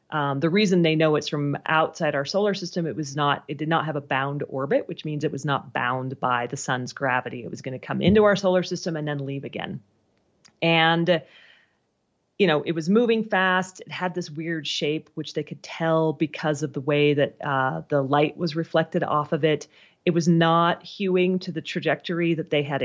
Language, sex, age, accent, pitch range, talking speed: English, female, 30-49, American, 145-180 Hz, 220 wpm